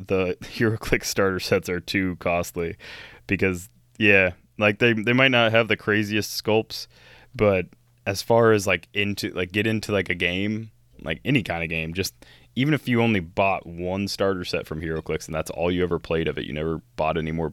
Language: English